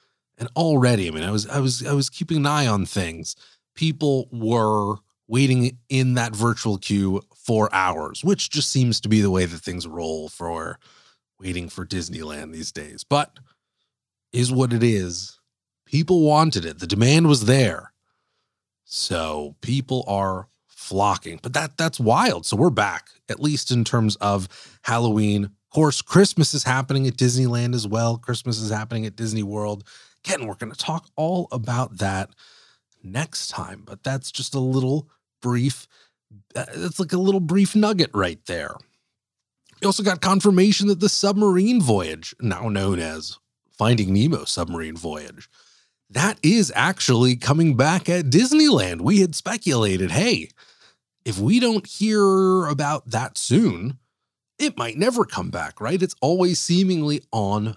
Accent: American